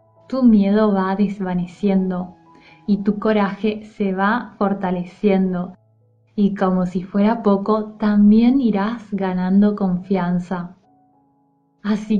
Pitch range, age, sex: 185-215 Hz, 10-29, female